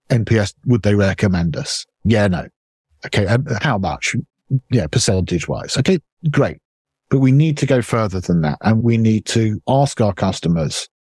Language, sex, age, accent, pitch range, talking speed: English, male, 50-69, British, 110-145 Hz, 155 wpm